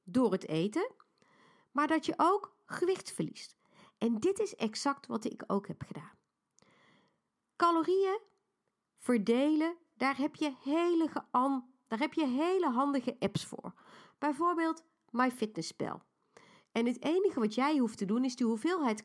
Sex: female